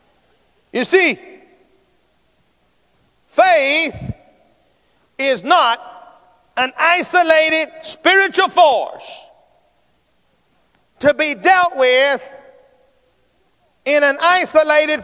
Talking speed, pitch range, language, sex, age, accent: 65 wpm, 230-330 Hz, English, male, 50-69, American